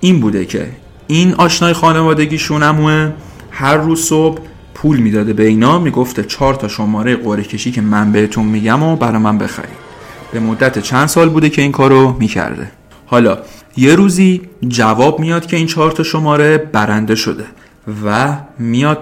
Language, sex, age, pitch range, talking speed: Persian, male, 40-59, 110-150 Hz, 150 wpm